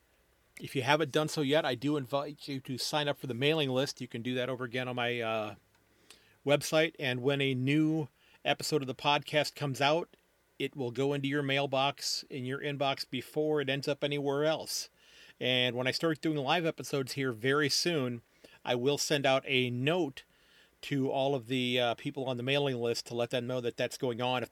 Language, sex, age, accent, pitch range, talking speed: English, male, 40-59, American, 125-145 Hz, 215 wpm